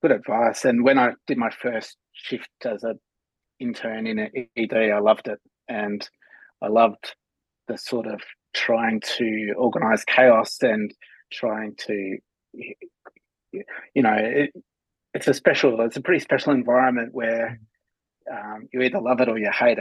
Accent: Australian